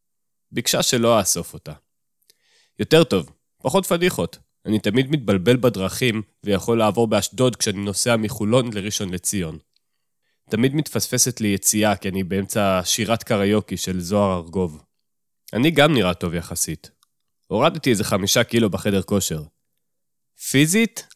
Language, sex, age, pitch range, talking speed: Hebrew, male, 30-49, 95-130 Hz, 125 wpm